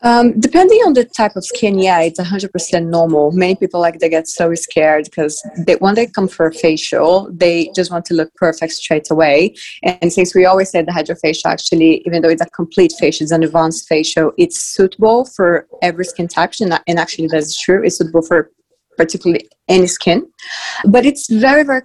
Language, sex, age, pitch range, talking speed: English, female, 20-39, 160-185 Hz, 205 wpm